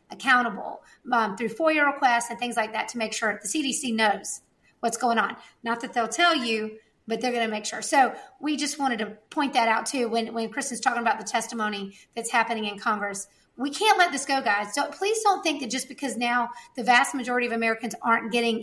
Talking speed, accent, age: 225 wpm, American, 40-59